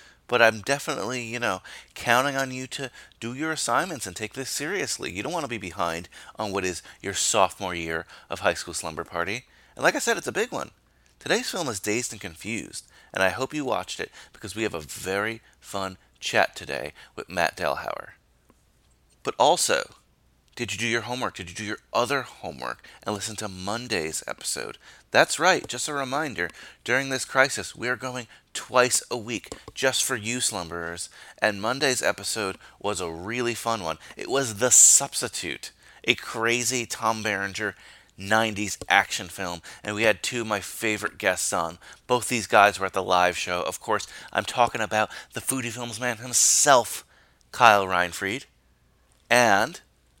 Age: 30-49